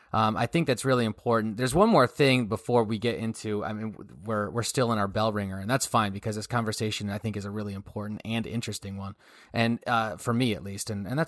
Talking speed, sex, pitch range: 270 wpm, male, 105-125 Hz